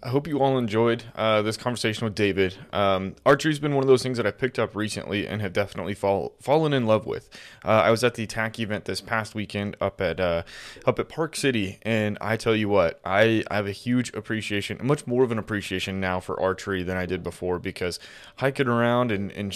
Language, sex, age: English, male, 20-39